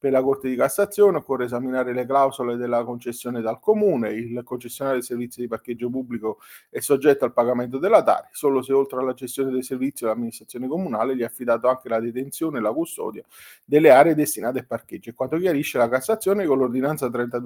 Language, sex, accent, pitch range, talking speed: Italian, male, native, 120-145 Hz, 190 wpm